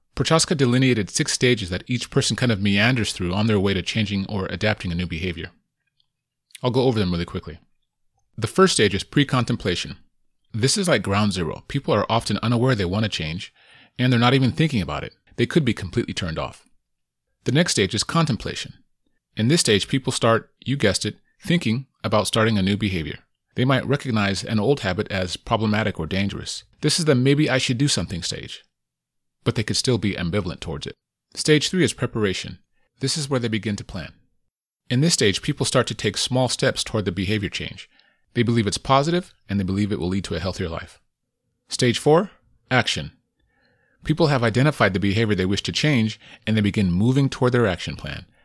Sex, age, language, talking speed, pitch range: male, 30-49, English, 195 wpm, 95-130 Hz